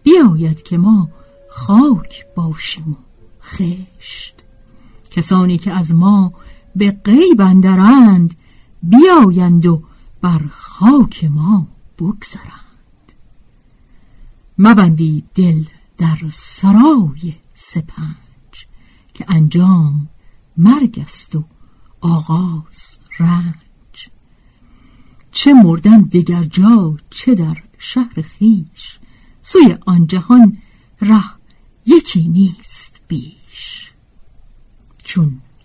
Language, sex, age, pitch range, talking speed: Persian, female, 50-69, 160-215 Hz, 80 wpm